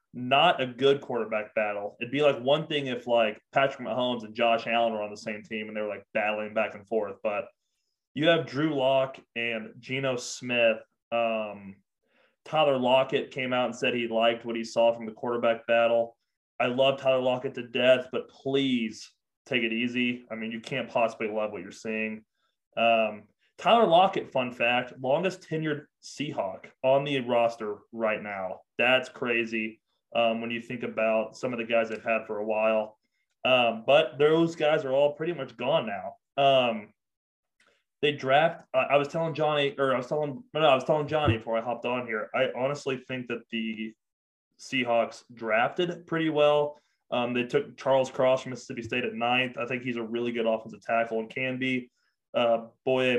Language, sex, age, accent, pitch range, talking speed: English, male, 20-39, American, 110-130 Hz, 190 wpm